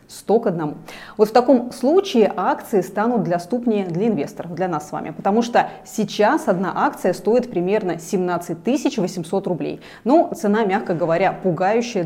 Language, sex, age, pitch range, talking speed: Russian, female, 30-49, 175-235 Hz, 155 wpm